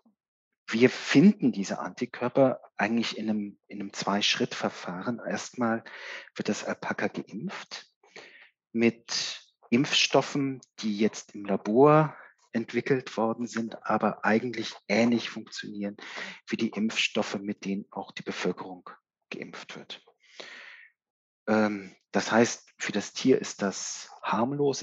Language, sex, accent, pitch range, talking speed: German, male, German, 105-120 Hz, 110 wpm